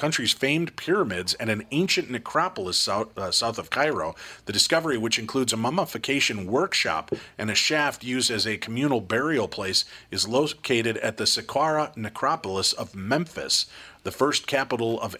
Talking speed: 150 wpm